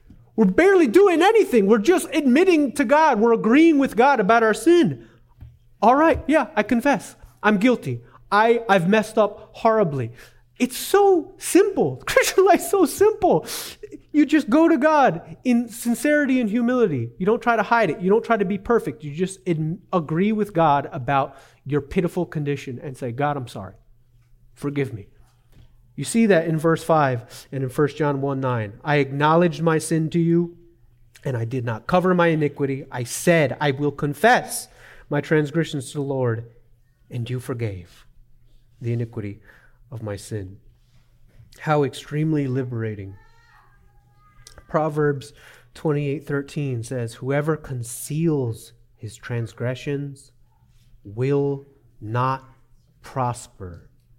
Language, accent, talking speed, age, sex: English, American, 145 wpm, 30-49, male